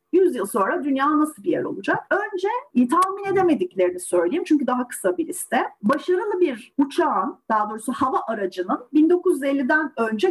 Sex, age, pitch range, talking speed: female, 40-59, 200-310 Hz, 155 wpm